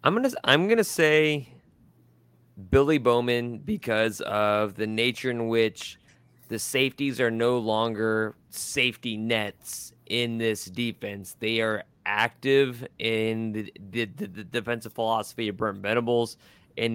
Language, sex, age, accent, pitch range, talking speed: English, male, 20-39, American, 105-120 Hz, 125 wpm